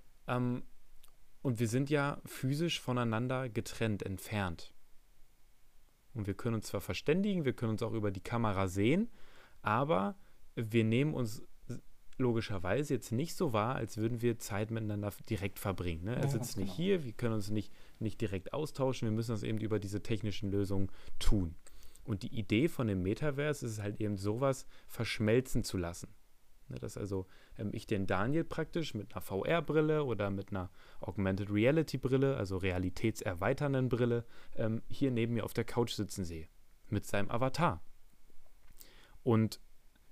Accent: German